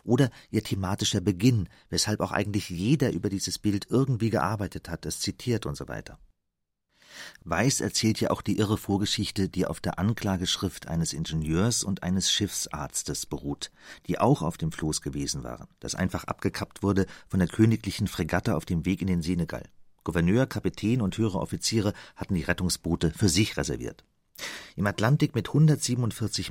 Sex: male